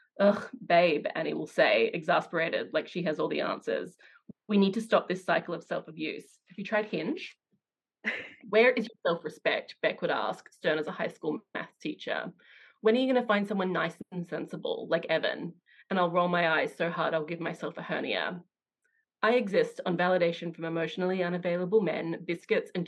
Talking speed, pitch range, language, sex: 190 wpm, 170-230 Hz, English, female